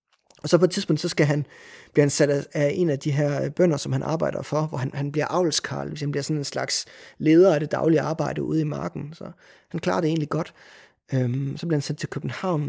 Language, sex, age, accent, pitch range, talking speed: Danish, male, 30-49, native, 145-170 Hz, 250 wpm